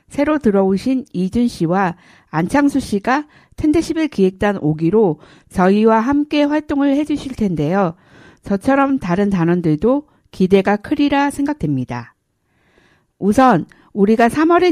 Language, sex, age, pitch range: Korean, female, 60-79, 180-275 Hz